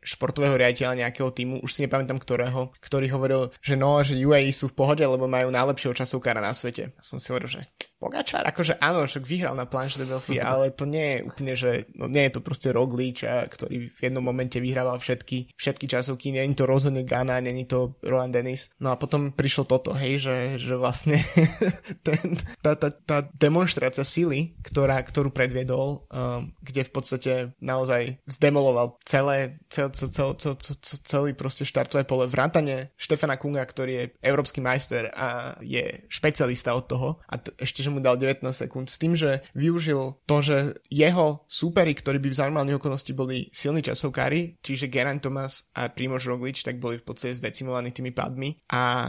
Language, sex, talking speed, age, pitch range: Slovak, male, 180 wpm, 20-39, 130-145 Hz